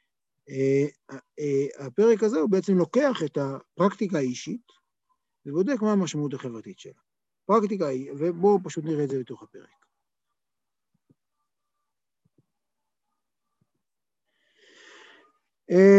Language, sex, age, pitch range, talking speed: Hebrew, male, 50-69, 145-205 Hz, 90 wpm